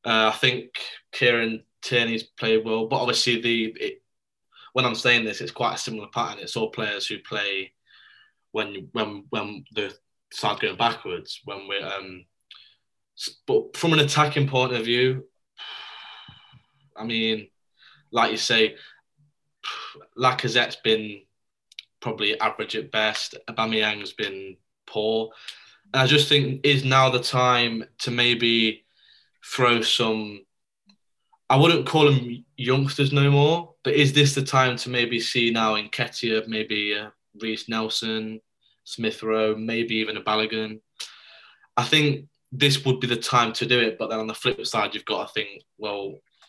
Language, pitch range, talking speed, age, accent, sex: English, 110-130 Hz, 150 wpm, 10-29, British, male